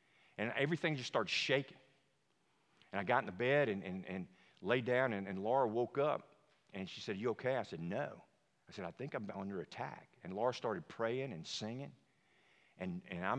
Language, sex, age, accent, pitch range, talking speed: English, male, 50-69, American, 115-170 Hz, 205 wpm